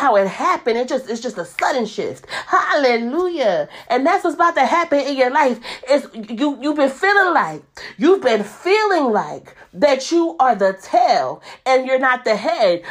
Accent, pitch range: American, 230-315 Hz